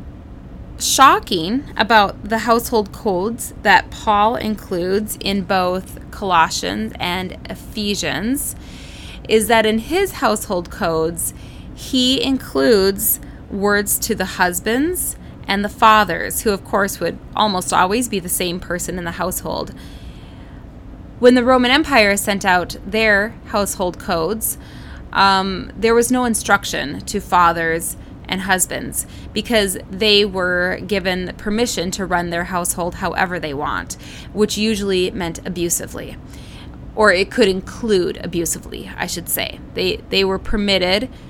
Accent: American